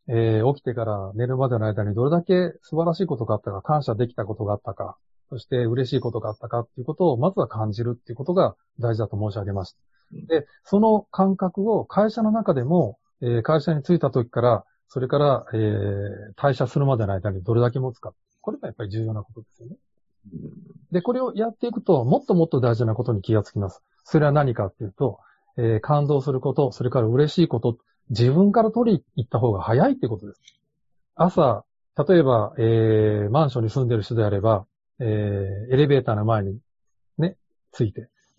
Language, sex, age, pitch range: Japanese, male, 40-59, 110-165 Hz